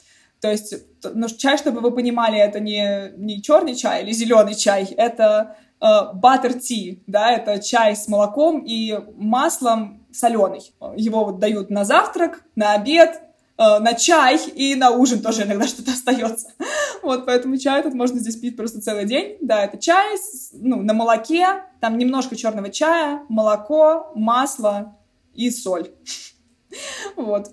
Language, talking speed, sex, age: Russian, 155 wpm, female, 20-39